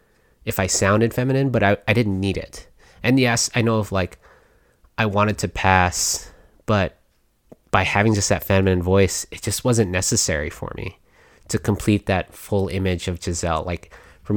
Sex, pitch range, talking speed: male, 90-105 Hz, 175 wpm